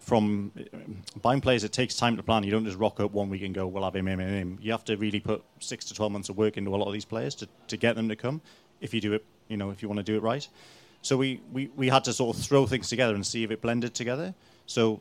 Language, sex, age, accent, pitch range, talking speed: English, male, 30-49, British, 105-115 Hz, 305 wpm